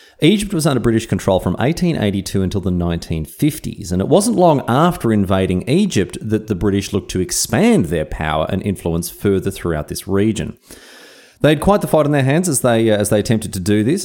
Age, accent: 30-49, Australian